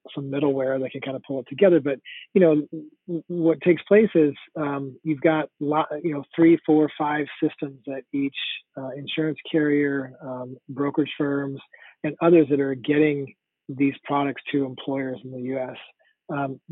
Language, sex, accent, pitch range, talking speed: English, male, American, 135-150 Hz, 170 wpm